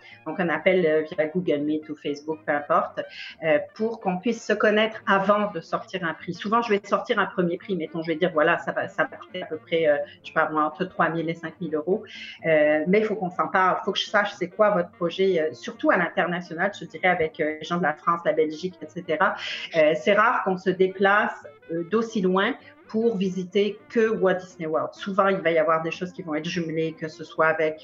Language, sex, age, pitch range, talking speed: French, female, 40-59, 160-205 Hz, 230 wpm